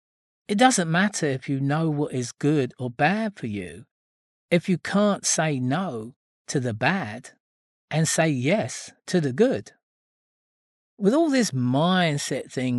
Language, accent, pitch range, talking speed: English, British, 125-190 Hz, 150 wpm